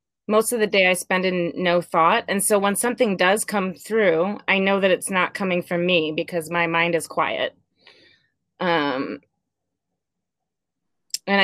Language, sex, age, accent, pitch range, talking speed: English, female, 20-39, American, 175-195 Hz, 165 wpm